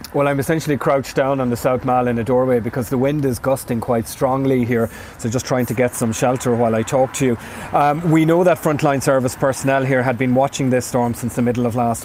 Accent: Irish